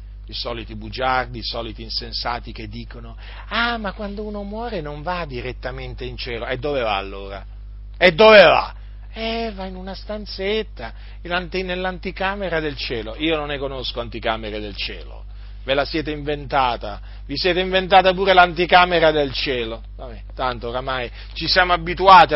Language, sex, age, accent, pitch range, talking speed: Italian, male, 40-59, native, 125-190 Hz, 150 wpm